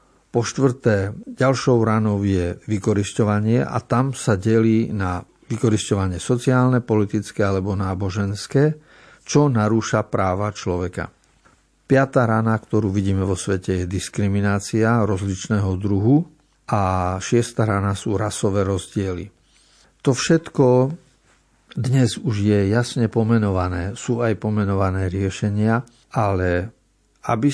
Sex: male